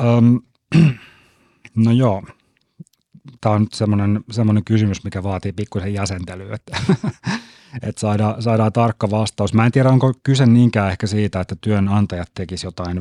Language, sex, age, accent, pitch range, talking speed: Finnish, male, 30-49, native, 95-110 Hz, 140 wpm